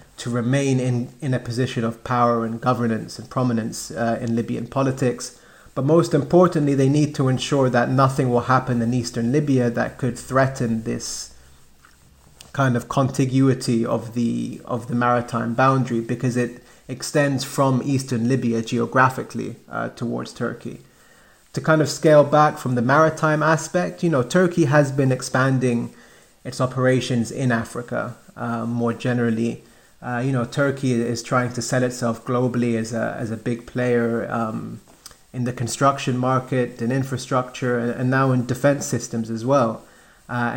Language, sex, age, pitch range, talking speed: English, male, 30-49, 120-135 Hz, 155 wpm